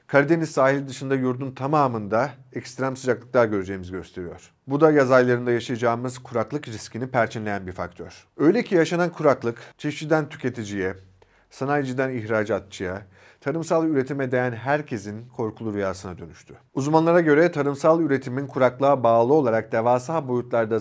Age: 40-59